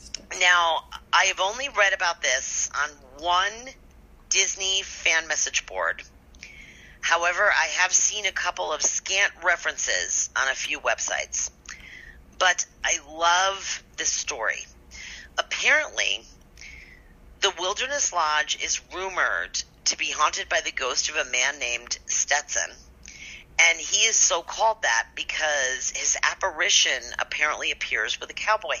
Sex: female